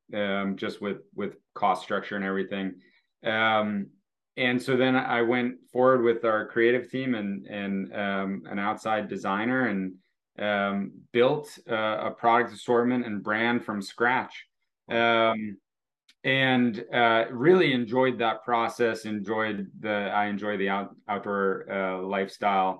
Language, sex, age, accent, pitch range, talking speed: English, male, 30-49, American, 100-115 Hz, 135 wpm